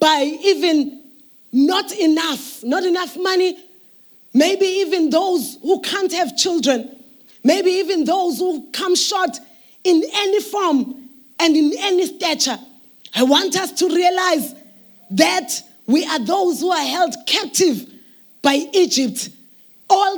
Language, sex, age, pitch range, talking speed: English, female, 20-39, 285-370 Hz, 130 wpm